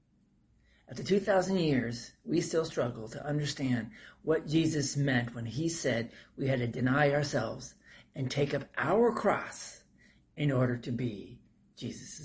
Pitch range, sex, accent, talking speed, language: 120-145 Hz, male, American, 140 wpm, English